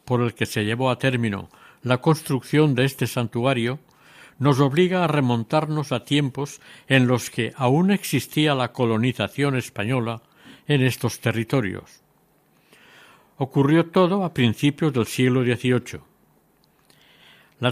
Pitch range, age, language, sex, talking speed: 120-150 Hz, 60-79, Spanish, male, 125 wpm